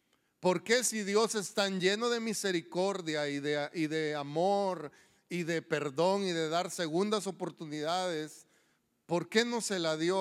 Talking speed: 160 wpm